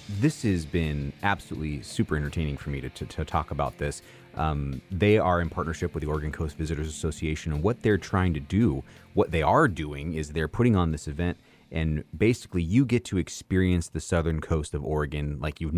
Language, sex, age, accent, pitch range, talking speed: English, male, 30-49, American, 80-100 Hz, 205 wpm